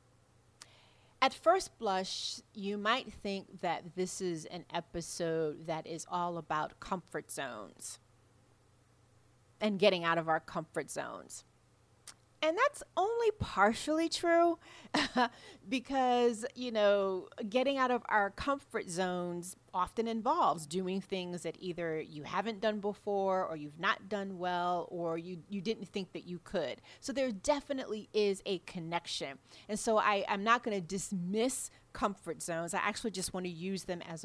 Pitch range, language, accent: 165-225 Hz, English, American